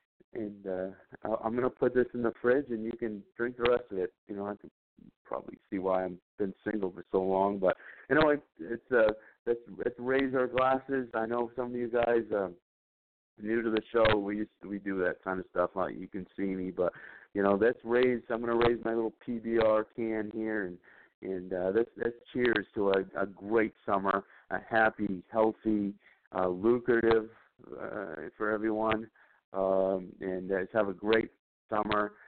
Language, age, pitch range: English, 50-69, 95-120 Hz